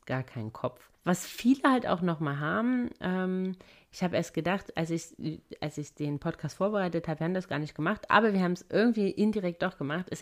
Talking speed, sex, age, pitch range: 210 wpm, female, 30-49, 150-185 Hz